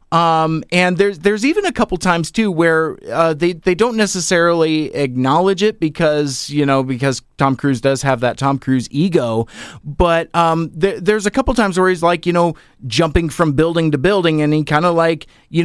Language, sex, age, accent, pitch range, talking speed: English, male, 30-49, American, 135-175 Hz, 200 wpm